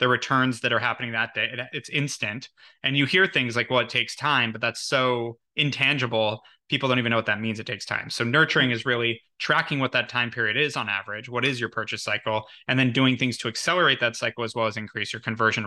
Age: 20-39